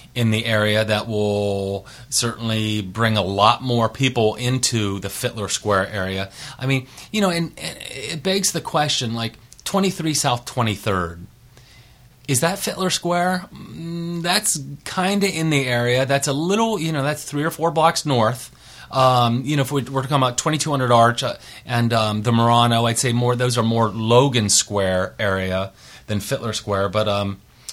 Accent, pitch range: American, 110-150 Hz